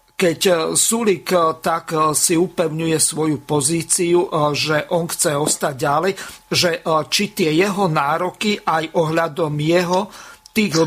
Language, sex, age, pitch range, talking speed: Slovak, male, 50-69, 155-180 Hz, 115 wpm